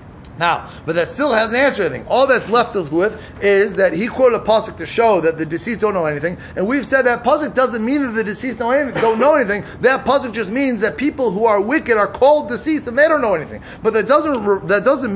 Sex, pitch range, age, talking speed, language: male, 225-290 Hz, 30-49, 250 wpm, English